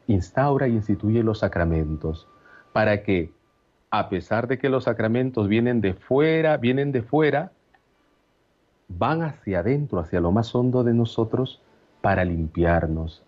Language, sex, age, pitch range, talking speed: Spanish, male, 40-59, 90-125 Hz, 135 wpm